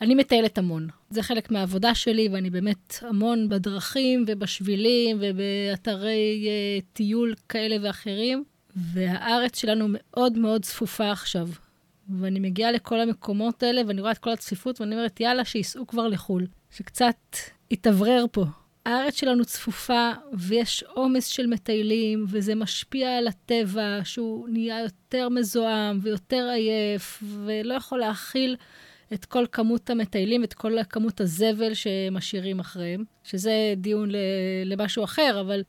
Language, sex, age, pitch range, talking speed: Hebrew, female, 20-39, 195-235 Hz, 130 wpm